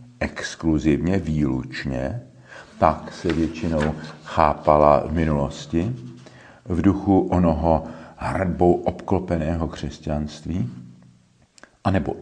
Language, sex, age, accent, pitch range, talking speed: Czech, male, 50-69, native, 75-115 Hz, 75 wpm